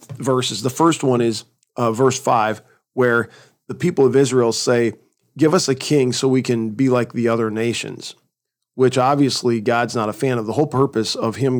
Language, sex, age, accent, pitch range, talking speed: English, male, 40-59, American, 115-130 Hz, 195 wpm